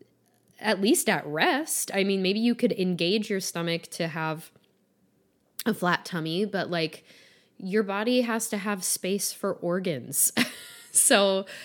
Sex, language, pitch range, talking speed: female, English, 175-230 Hz, 145 wpm